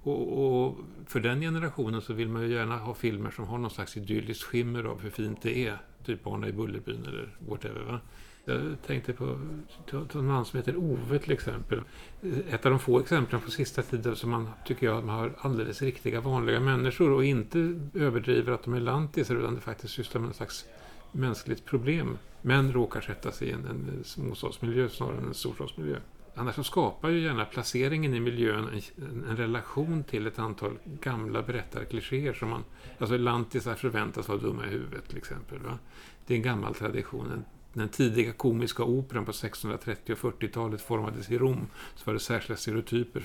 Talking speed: 190 wpm